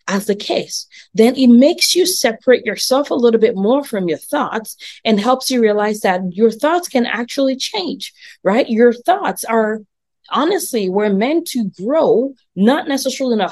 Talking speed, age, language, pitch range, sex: 175 wpm, 30-49, English, 195-260 Hz, female